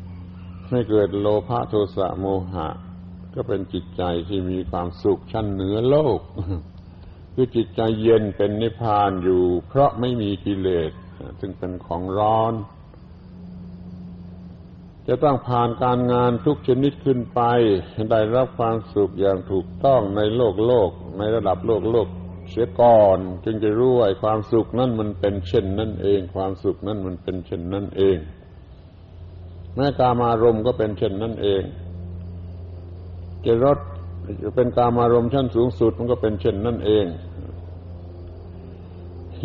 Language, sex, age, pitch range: Thai, male, 60-79, 90-115 Hz